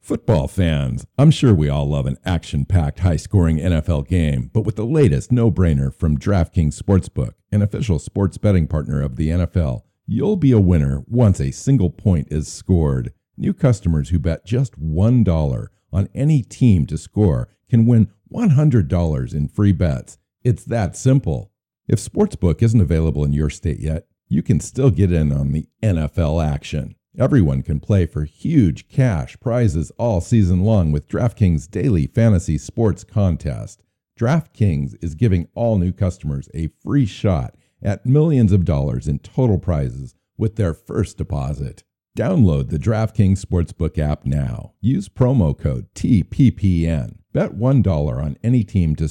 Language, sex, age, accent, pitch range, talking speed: English, male, 50-69, American, 75-115 Hz, 155 wpm